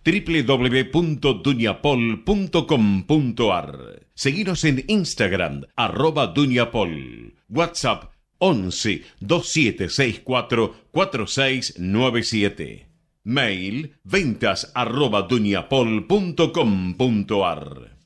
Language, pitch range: Spanish, 105-150 Hz